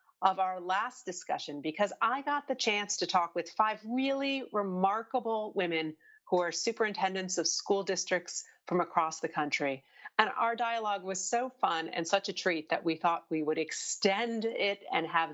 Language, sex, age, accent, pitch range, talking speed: English, female, 40-59, American, 175-220 Hz, 175 wpm